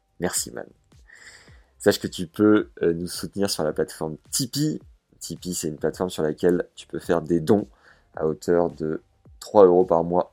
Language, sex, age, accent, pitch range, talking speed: French, male, 30-49, French, 80-95 Hz, 175 wpm